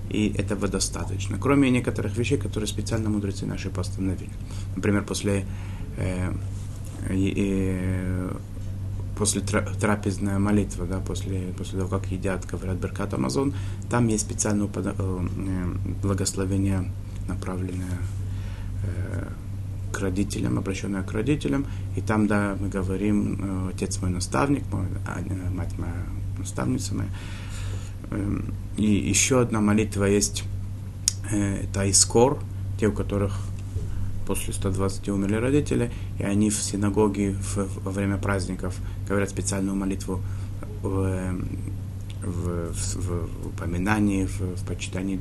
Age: 30-49